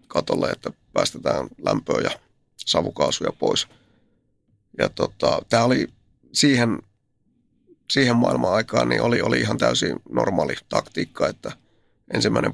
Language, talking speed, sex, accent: Finnish, 115 wpm, male, native